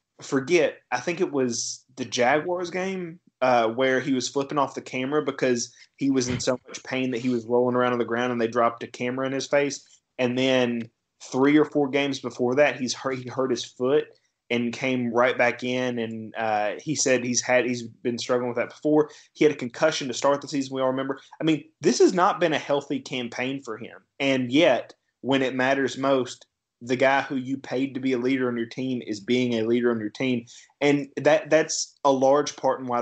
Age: 20-39